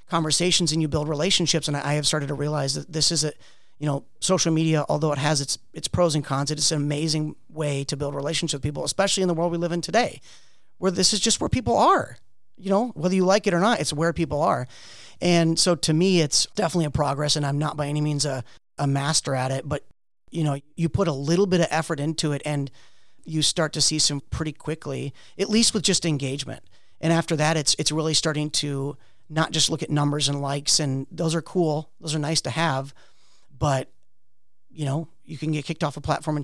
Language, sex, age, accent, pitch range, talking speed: English, male, 40-59, American, 140-165 Hz, 235 wpm